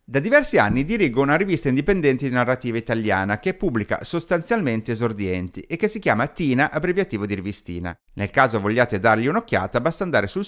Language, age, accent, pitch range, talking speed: Italian, 30-49, native, 110-180 Hz, 170 wpm